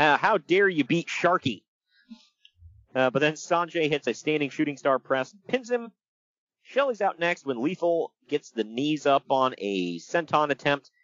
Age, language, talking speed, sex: 40-59, English, 170 wpm, male